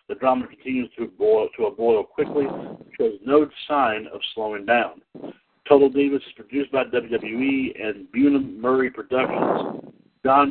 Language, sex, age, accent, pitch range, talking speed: English, male, 60-79, American, 120-150 Hz, 155 wpm